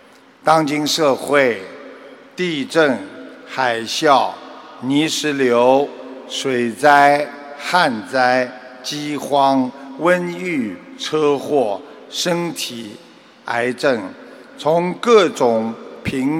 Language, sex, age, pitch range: Chinese, male, 50-69, 135-190 Hz